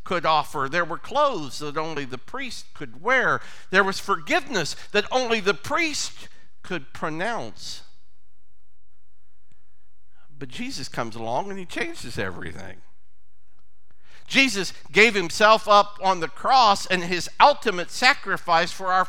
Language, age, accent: English, 50-69, American